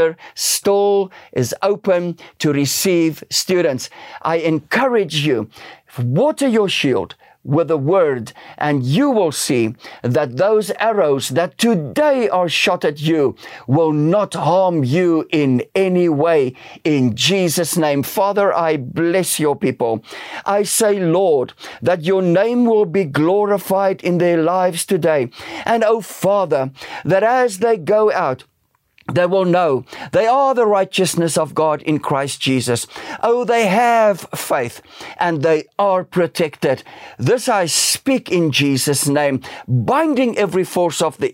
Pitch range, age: 140-195 Hz, 50-69